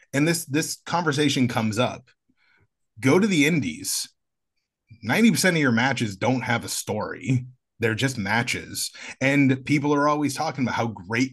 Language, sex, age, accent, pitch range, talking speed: English, male, 30-49, American, 110-140 Hz, 155 wpm